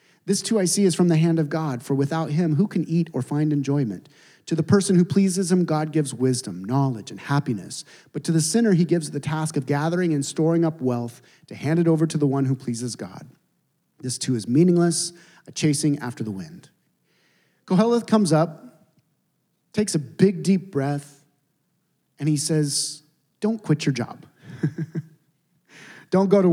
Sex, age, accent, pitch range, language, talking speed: male, 30-49, American, 135-175 Hz, English, 185 wpm